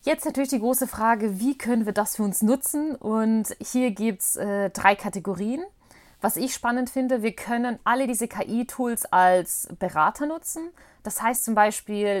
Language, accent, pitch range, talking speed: German, German, 190-240 Hz, 165 wpm